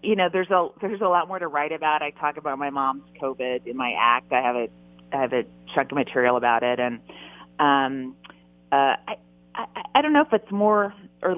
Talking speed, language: 225 wpm, English